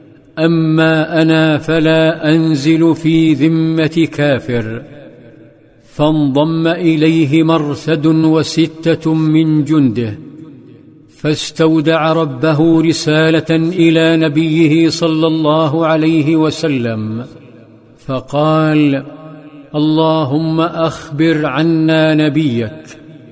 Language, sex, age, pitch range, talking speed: Arabic, male, 50-69, 150-160 Hz, 70 wpm